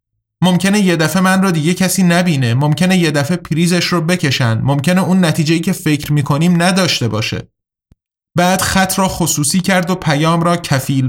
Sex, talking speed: male, 170 wpm